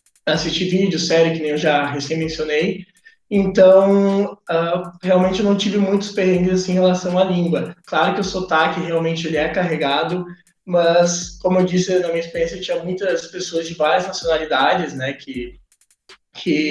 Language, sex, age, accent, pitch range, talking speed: Portuguese, male, 20-39, Brazilian, 155-185 Hz, 165 wpm